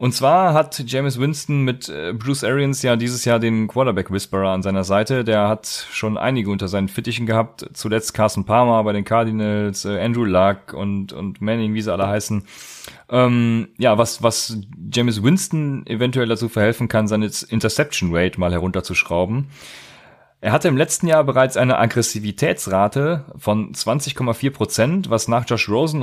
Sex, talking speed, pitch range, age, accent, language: male, 160 wpm, 105-130 Hz, 30-49, German, German